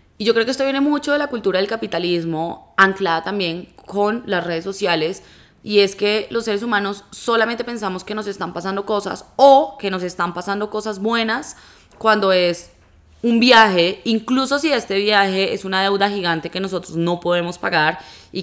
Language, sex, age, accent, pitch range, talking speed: Spanish, female, 20-39, Colombian, 170-210 Hz, 180 wpm